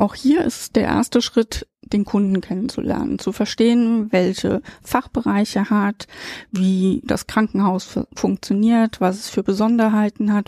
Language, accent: German, German